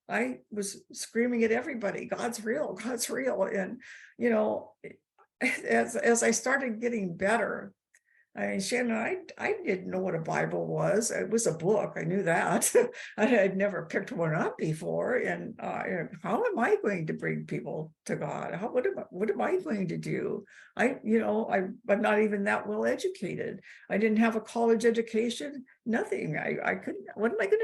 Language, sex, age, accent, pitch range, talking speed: English, female, 60-79, American, 190-245 Hz, 190 wpm